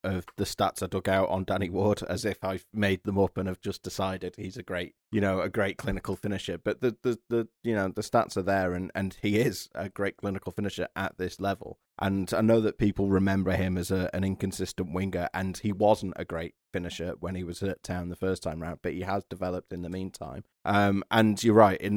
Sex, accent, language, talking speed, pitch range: male, British, English, 240 wpm, 90-105 Hz